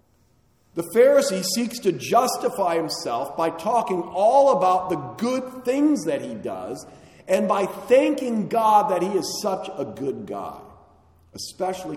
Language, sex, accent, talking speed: English, male, American, 140 wpm